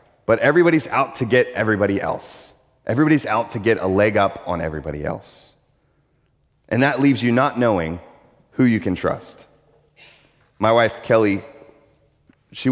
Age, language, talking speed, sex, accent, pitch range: 30-49, English, 145 wpm, male, American, 90-120 Hz